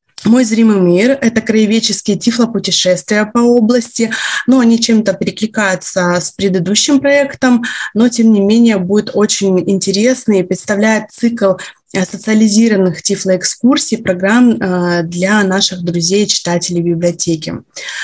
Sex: female